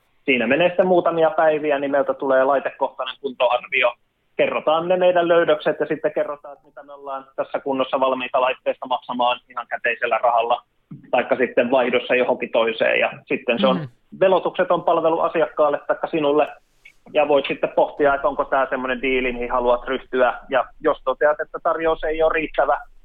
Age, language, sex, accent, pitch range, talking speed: 20-39, Finnish, male, native, 125-155 Hz, 165 wpm